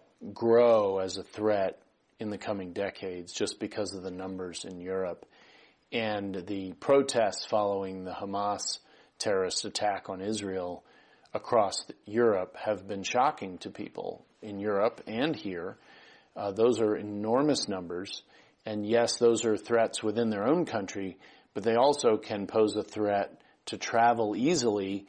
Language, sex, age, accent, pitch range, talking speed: English, male, 40-59, American, 95-110 Hz, 145 wpm